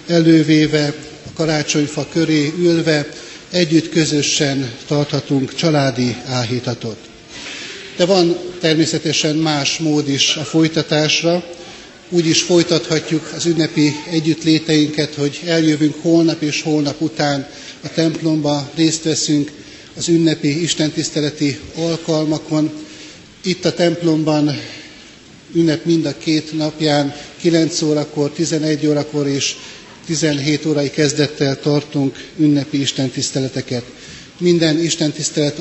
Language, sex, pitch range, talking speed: Hungarian, male, 145-160 Hz, 100 wpm